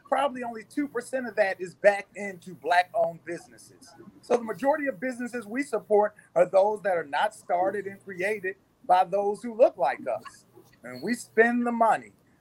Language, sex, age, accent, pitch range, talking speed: English, male, 30-49, American, 155-220 Hz, 175 wpm